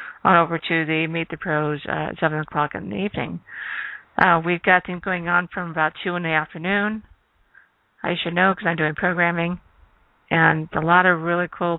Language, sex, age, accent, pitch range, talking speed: English, female, 50-69, American, 160-180 Hz, 200 wpm